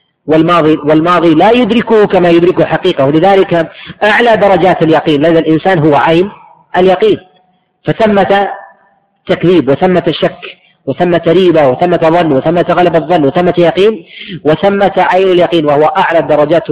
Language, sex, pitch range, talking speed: Arabic, female, 135-175 Hz, 125 wpm